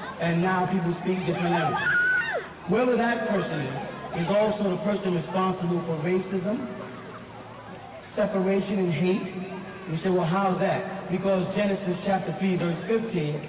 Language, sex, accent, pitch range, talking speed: English, male, American, 165-200 Hz, 140 wpm